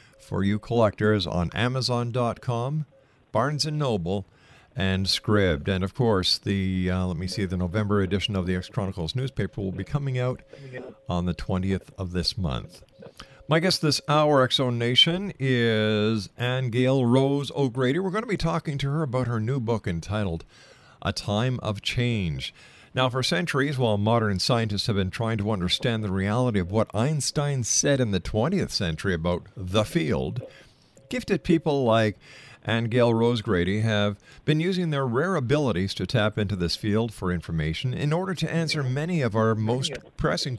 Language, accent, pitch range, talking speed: English, American, 100-130 Hz, 170 wpm